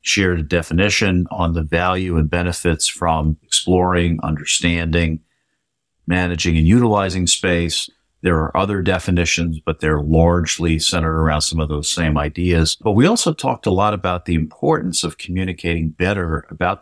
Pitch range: 80-90 Hz